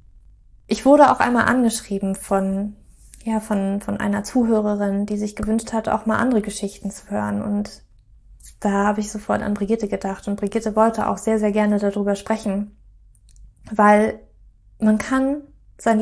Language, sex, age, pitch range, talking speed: German, female, 20-39, 205-235 Hz, 155 wpm